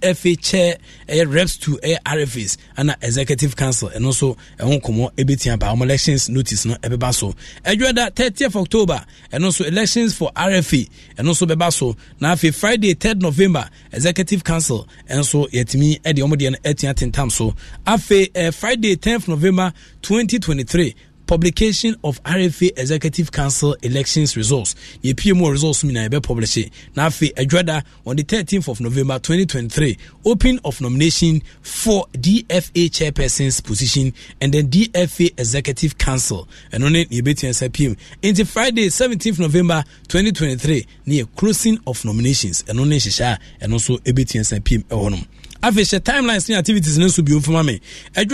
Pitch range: 130-185 Hz